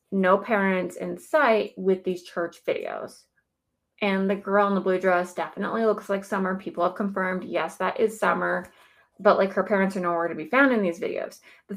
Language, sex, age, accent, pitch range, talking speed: English, female, 20-39, American, 180-225 Hz, 200 wpm